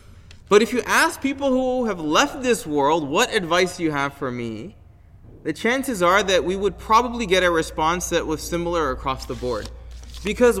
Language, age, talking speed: English, 20-39, 190 wpm